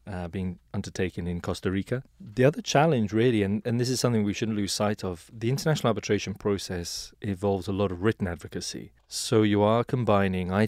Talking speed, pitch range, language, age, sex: 195 wpm, 90-110 Hz, English, 30-49, male